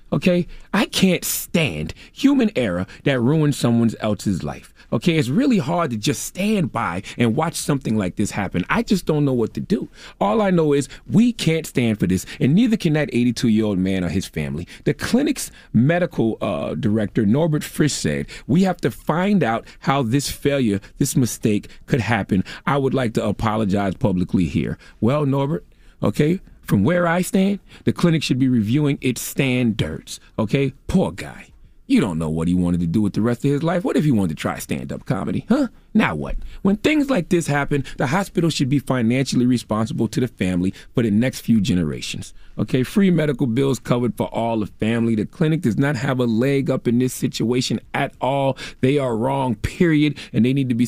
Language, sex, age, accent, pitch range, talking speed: English, male, 30-49, American, 110-155 Hz, 200 wpm